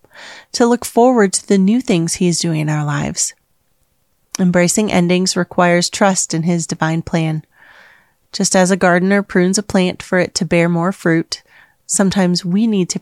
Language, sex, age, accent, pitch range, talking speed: English, female, 30-49, American, 165-205 Hz, 175 wpm